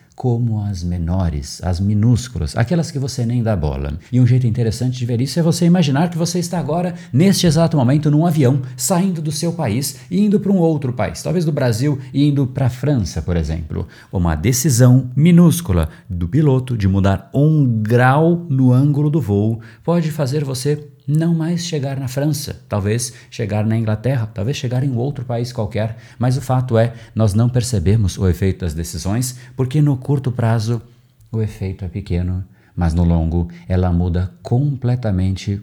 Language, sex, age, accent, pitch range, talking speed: Portuguese, male, 50-69, Brazilian, 100-140 Hz, 180 wpm